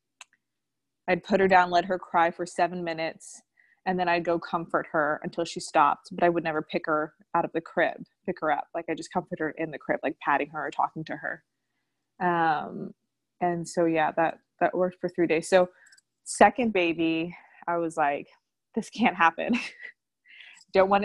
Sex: female